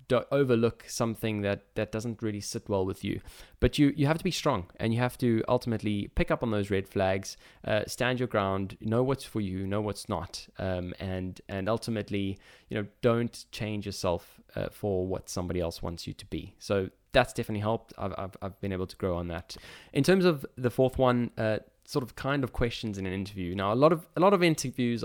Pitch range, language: 95-125 Hz, English